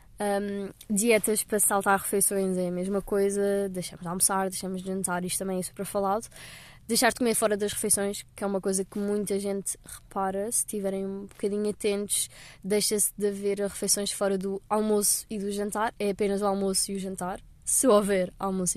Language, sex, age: Portuguese, female, 20-39